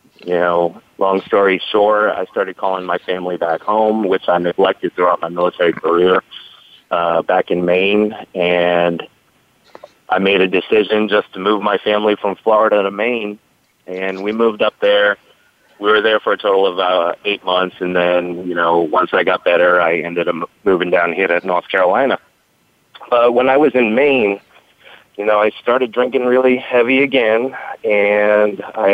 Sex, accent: male, American